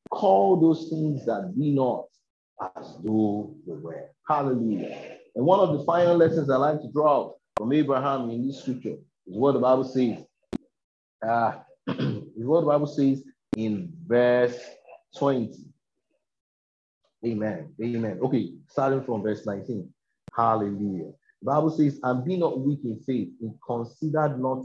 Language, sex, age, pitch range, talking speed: English, male, 30-49, 110-140 Hz, 145 wpm